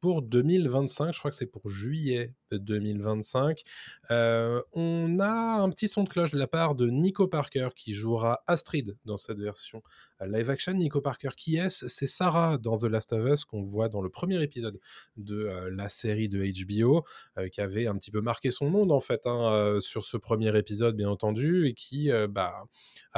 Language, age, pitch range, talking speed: French, 20-39, 105-145 Hz, 195 wpm